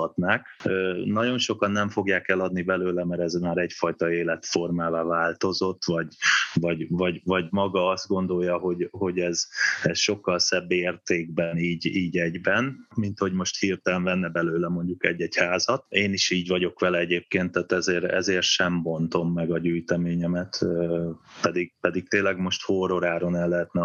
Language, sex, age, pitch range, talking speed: Hungarian, male, 20-39, 90-100 Hz, 150 wpm